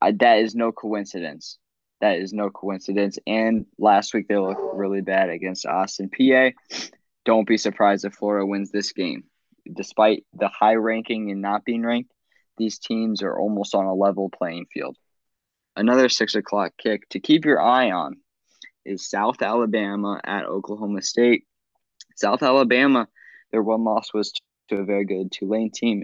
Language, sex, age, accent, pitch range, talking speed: English, male, 20-39, American, 100-115 Hz, 160 wpm